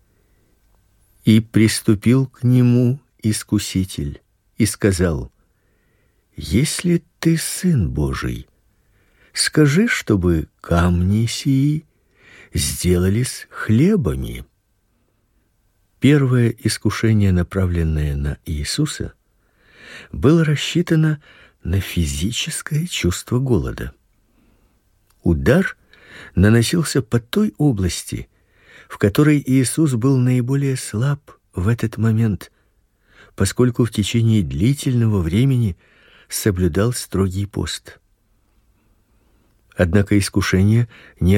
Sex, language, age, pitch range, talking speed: male, Russian, 50-69, 95-130 Hz, 75 wpm